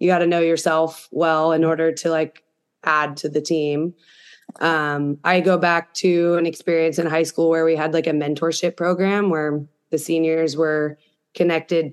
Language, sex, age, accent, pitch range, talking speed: English, female, 20-39, American, 150-170 Hz, 180 wpm